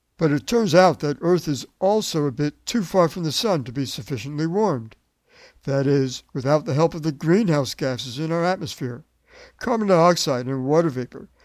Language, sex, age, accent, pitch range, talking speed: English, male, 60-79, American, 135-175 Hz, 190 wpm